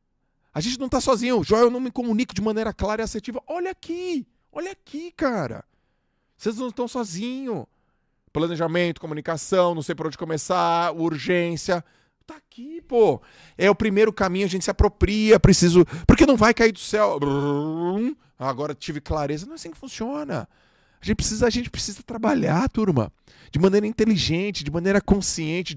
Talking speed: 160 wpm